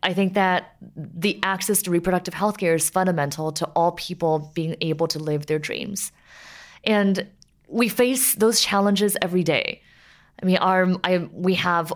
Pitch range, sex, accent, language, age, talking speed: 155-190 Hz, female, American, English, 20-39, 160 wpm